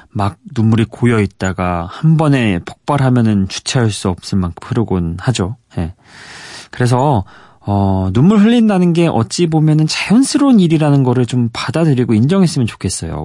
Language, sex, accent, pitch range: Korean, male, native, 100-145 Hz